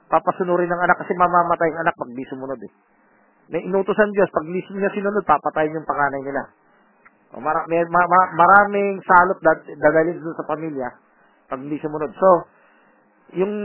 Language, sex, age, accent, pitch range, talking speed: Filipino, male, 40-59, native, 160-210 Hz, 160 wpm